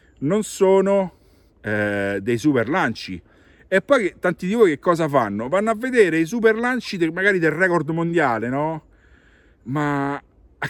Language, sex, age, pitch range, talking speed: Italian, male, 50-69, 105-160 Hz, 165 wpm